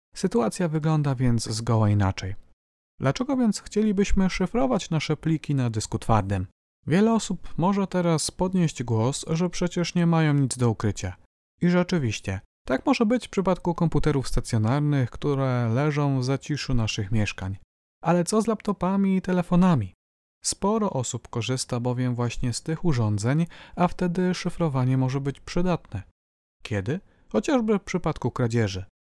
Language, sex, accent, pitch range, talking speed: Polish, male, native, 110-175 Hz, 140 wpm